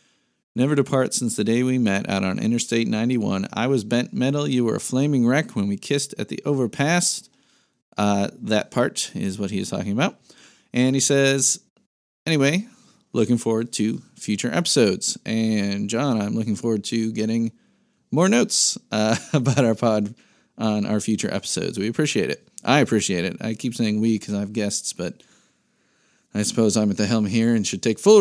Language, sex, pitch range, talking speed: English, male, 110-140 Hz, 185 wpm